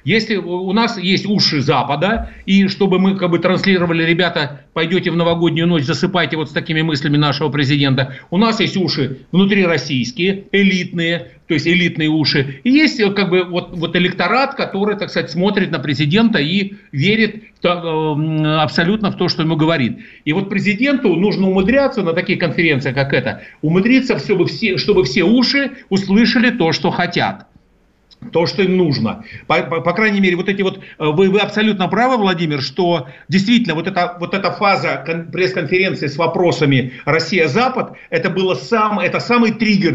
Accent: native